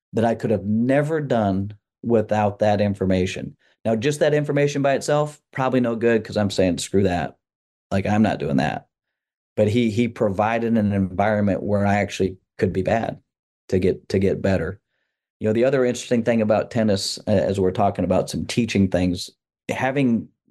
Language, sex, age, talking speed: English, male, 40-59, 180 wpm